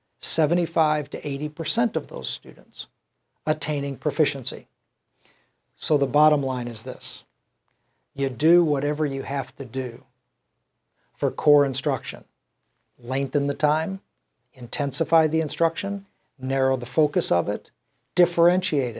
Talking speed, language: 115 wpm, English